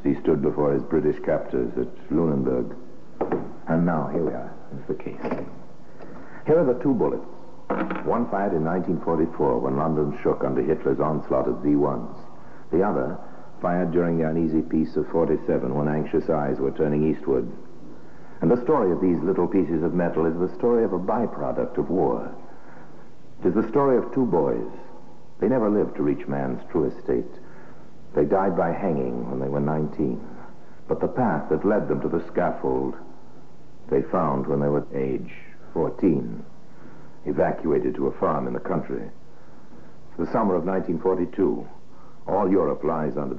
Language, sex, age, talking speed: English, male, 60-79, 165 wpm